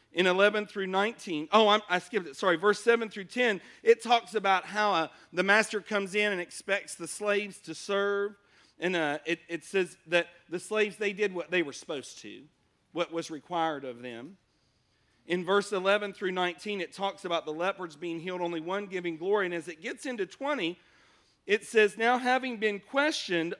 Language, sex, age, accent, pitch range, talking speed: English, male, 40-59, American, 175-230 Hz, 195 wpm